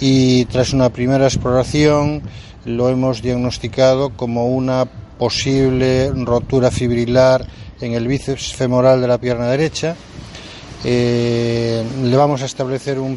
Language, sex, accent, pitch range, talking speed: Spanish, male, Spanish, 120-160 Hz, 125 wpm